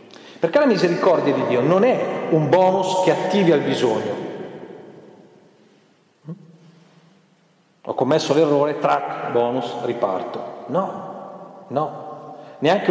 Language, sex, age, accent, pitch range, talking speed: Italian, male, 40-59, native, 145-195 Hz, 100 wpm